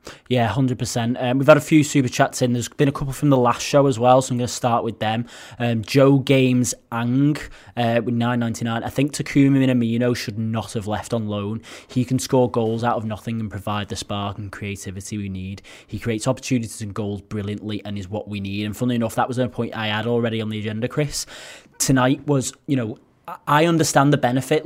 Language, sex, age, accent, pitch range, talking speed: English, male, 20-39, British, 105-130 Hz, 230 wpm